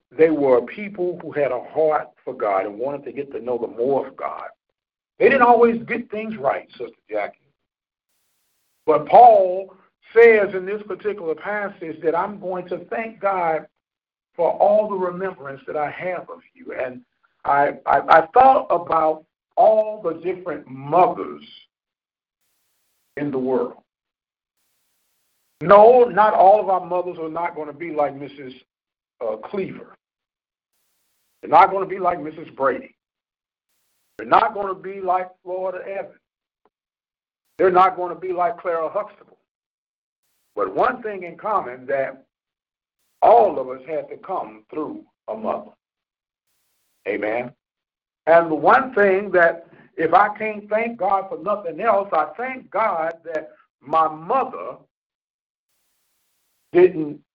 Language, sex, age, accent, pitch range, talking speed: English, male, 50-69, American, 160-215 Hz, 145 wpm